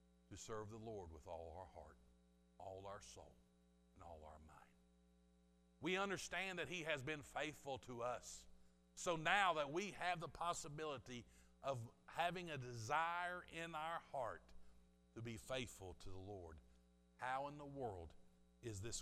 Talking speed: 160 wpm